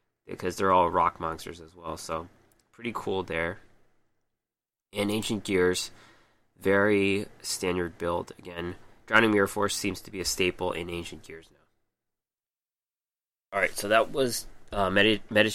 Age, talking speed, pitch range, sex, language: 20-39, 145 wpm, 90-115 Hz, male, English